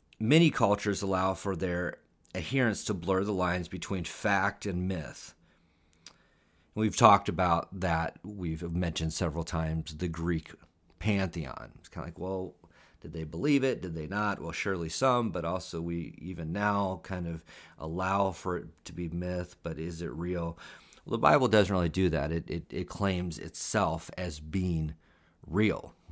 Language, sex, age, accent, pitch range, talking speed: English, male, 40-59, American, 85-100 Hz, 165 wpm